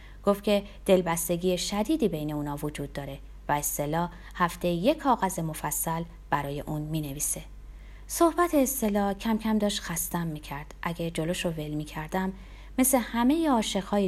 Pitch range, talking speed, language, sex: 160-265 Hz, 155 wpm, Persian, female